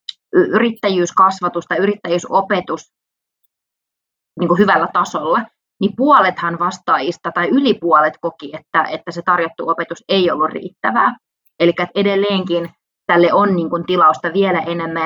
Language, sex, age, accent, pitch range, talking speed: Finnish, female, 20-39, native, 170-190 Hz, 125 wpm